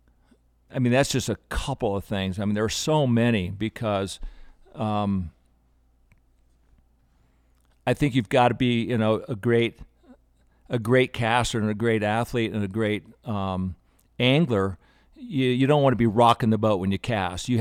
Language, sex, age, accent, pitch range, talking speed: English, male, 50-69, American, 95-125 Hz, 175 wpm